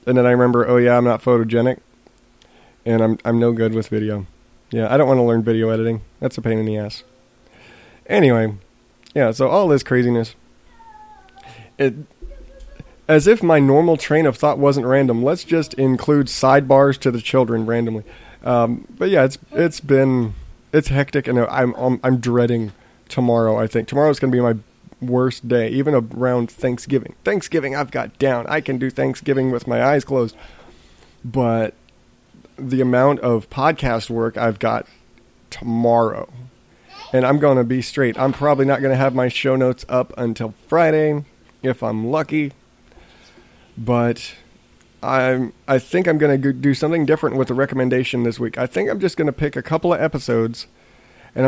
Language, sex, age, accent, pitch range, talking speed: English, male, 30-49, American, 115-145 Hz, 175 wpm